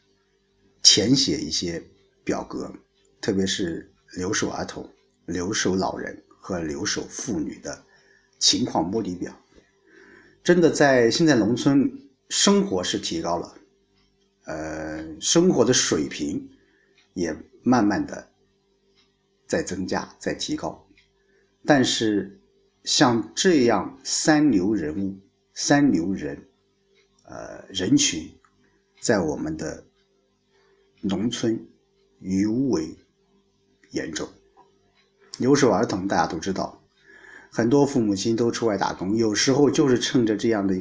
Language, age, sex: Chinese, 50-69, male